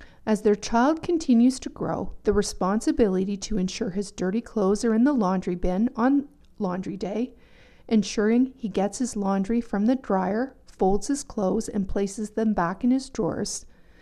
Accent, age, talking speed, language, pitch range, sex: American, 40-59, 165 wpm, English, 195-235 Hz, female